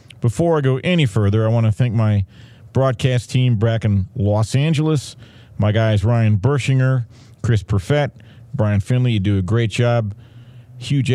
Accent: American